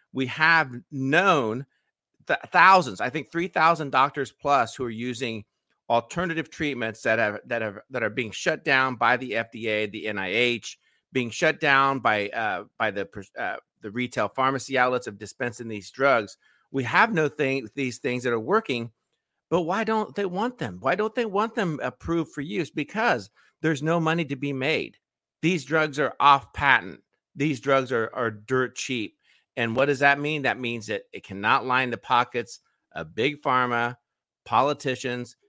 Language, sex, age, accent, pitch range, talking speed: English, male, 50-69, American, 110-150 Hz, 170 wpm